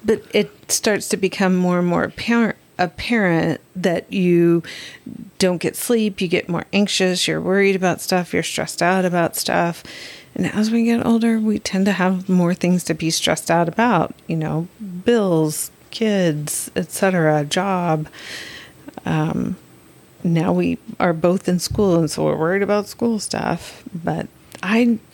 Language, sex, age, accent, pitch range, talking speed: English, female, 40-59, American, 160-195 Hz, 160 wpm